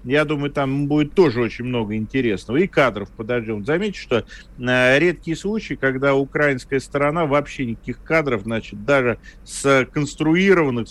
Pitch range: 115-165 Hz